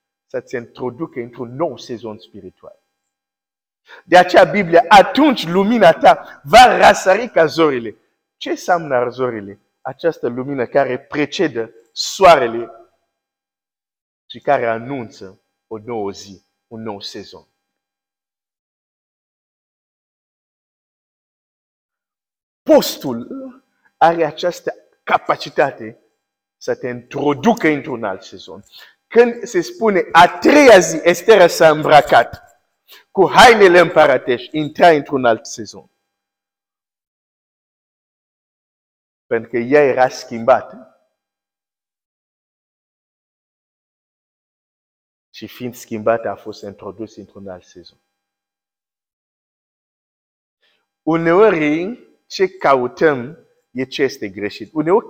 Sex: male